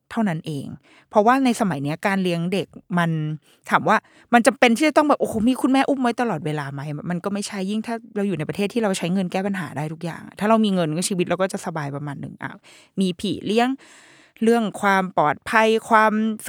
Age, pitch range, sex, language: 20-39, 170-225 Hz, female, Thai